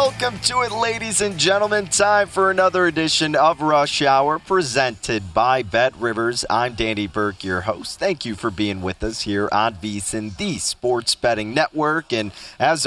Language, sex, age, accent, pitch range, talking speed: English, male, 30-49, American, 110-150 Hz, 175 wpm